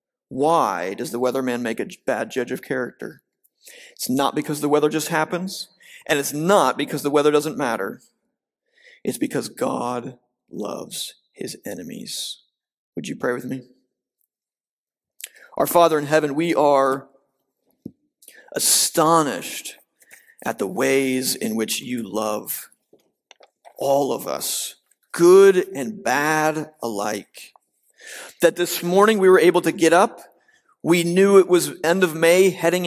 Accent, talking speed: American, 135 wpm